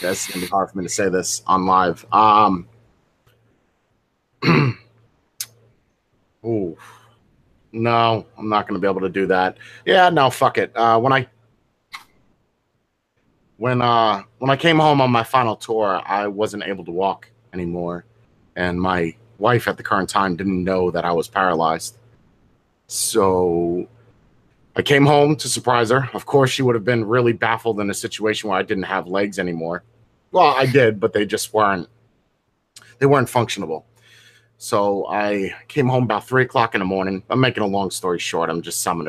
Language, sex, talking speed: English, male, 175 wpm